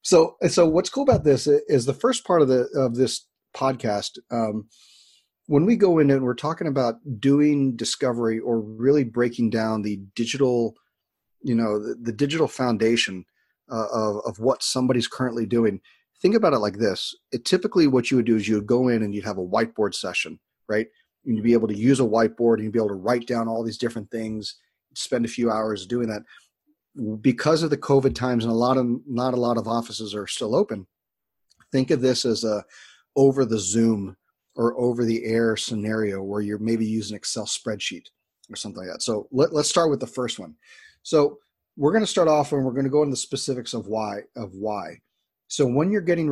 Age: 40-59